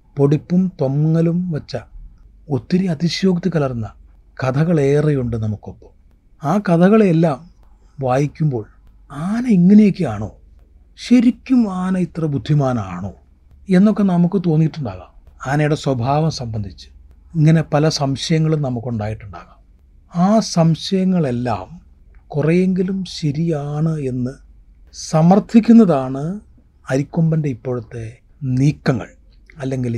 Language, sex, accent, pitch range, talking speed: Malayalam, male, native, 110-175 Hz, 75 wpm